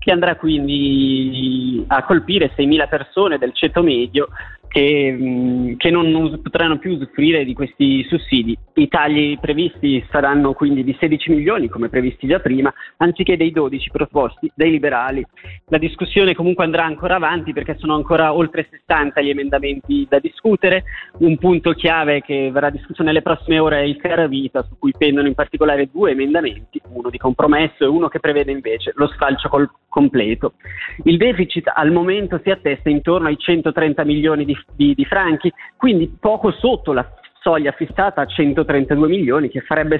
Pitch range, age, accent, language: 140-165 Hz, 20-39, native, Italian